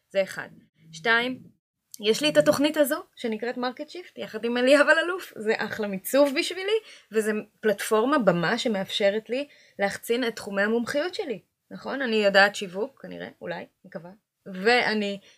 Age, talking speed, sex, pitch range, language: 20-39, 145 wpm, female, 180-230 Hz, Hebrew